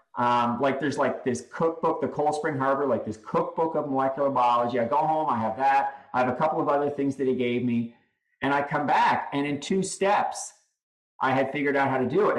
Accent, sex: American, male